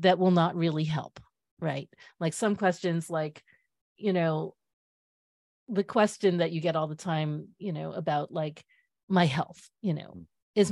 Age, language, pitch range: 40-59, English, 160-205 Hz